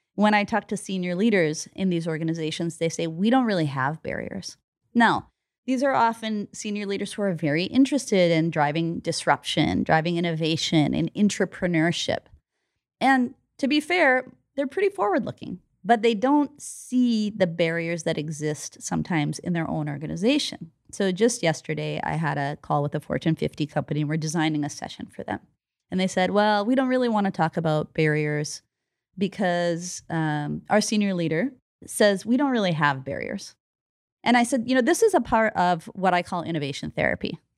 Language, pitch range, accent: English, 160-230 Hz, American